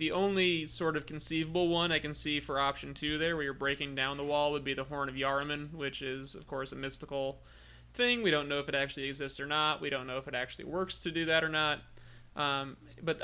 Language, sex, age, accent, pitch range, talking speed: English, male, 20-39, American, 130-150 Hz, 250 wpm